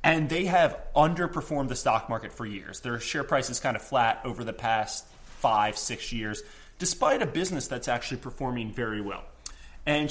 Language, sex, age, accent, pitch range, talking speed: English, male, 30-49, American, 120-165 Hz, 185 wpm